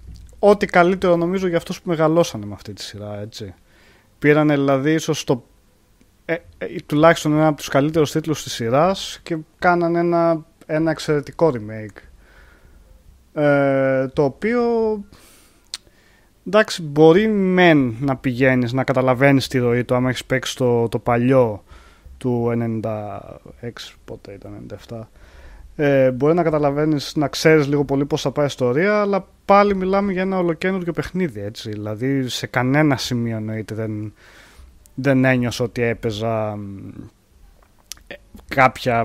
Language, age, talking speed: Greek, 20-39, 125 wpm